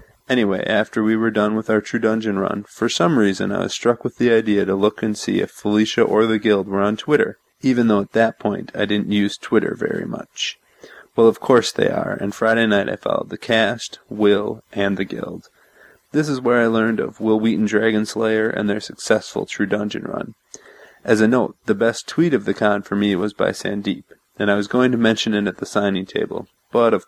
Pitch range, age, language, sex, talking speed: 100-115 Hz, 30-49, English, male, 220 wpm